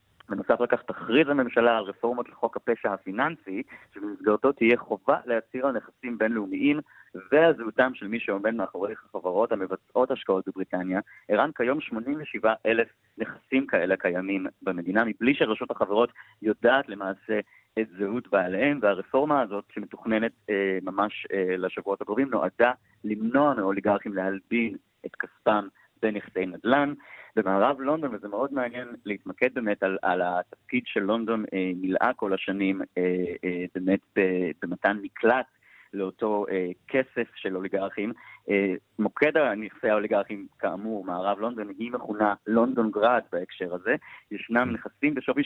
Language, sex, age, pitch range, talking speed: Hebrew, male, 30-49, 95-120 Hz, 130 wpm